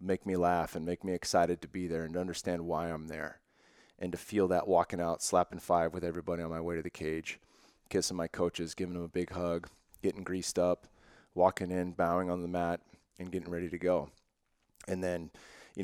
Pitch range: 85-100 Hz